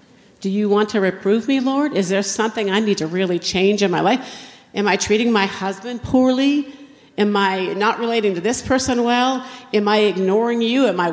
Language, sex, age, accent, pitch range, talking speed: English, female, 50-69, American, 195-245 Hz, 205 wpm